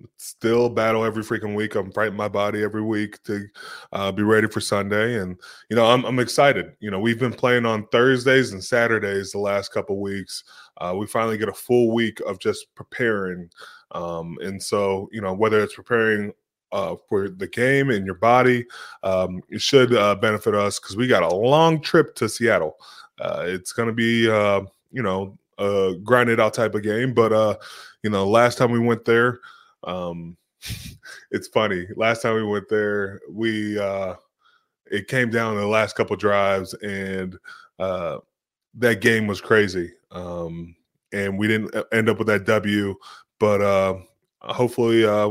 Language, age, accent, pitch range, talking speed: English, 20-39, American, 95-115 Hz, 180 wpm